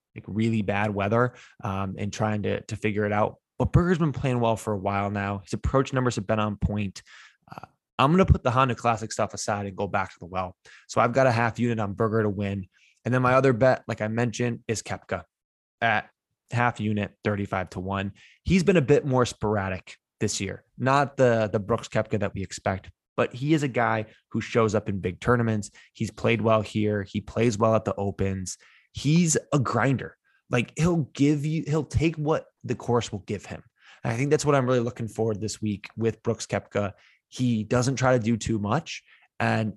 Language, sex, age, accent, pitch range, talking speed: English, male, 20-39, American, 105-130 Hz, 215 wpm